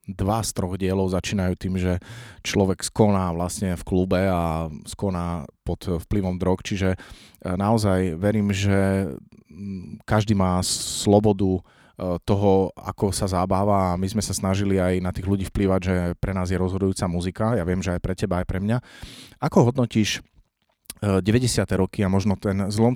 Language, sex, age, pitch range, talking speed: Slovak, male, 30-49, 95-110 Hz, 155 wpm